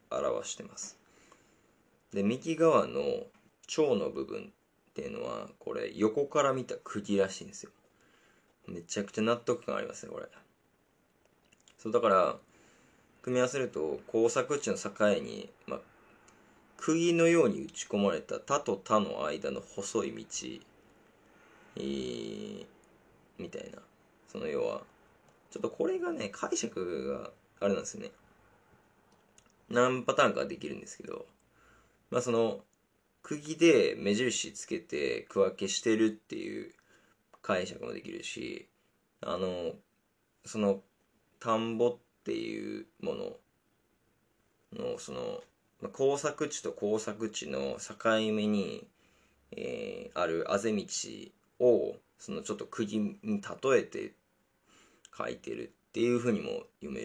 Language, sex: Japanese, male